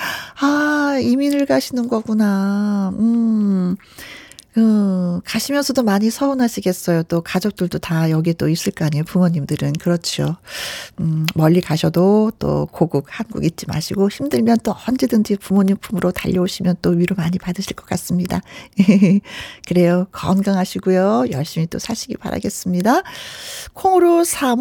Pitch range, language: 180-250 Hz, Korean